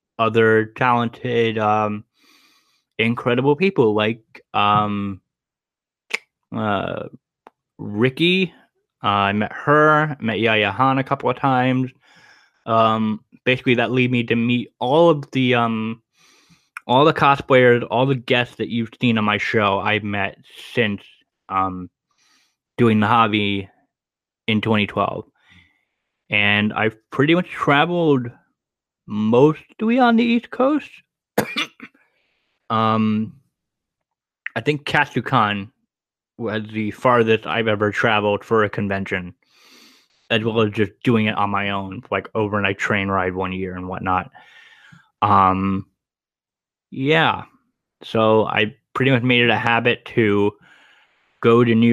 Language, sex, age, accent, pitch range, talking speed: English, male, 20-39, American, 105-135 Hz, 120 wpm